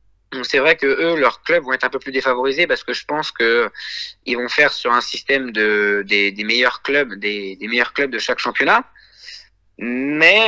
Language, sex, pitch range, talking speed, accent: French, male, 125-165 Hz, 205 wpm, French